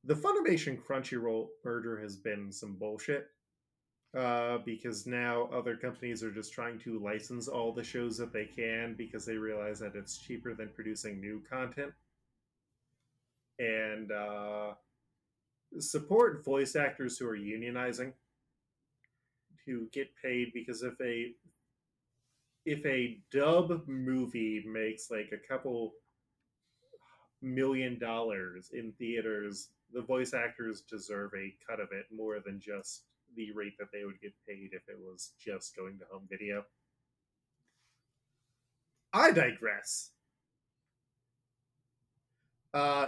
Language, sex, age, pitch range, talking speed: English, male, 20-39, 110-130 Hz, 125 wpm